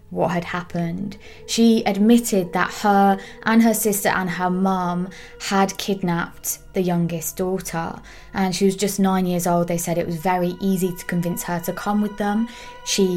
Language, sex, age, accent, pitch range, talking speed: English, female, 20-39, British, 175-200 Hz, 180 wpm